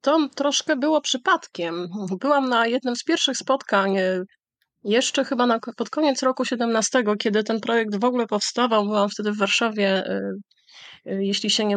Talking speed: 150 wpm